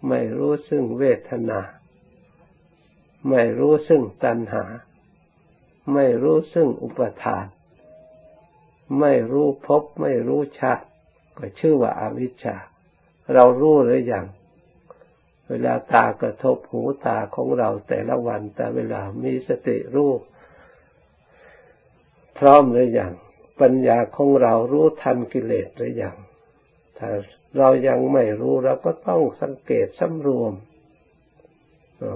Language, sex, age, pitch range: Thai, male, 60-79, 115-165 Hz